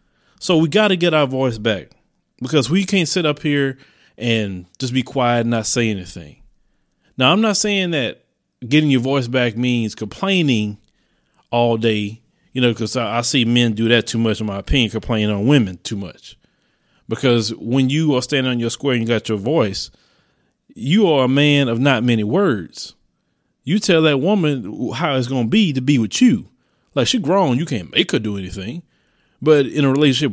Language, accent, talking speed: English, American, 200 wpm